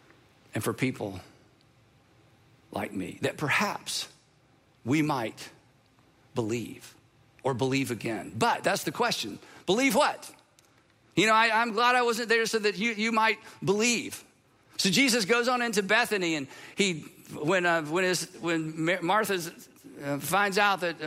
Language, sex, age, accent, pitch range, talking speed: English, male, 50-69, American, 165-235 Hz, 145 wpm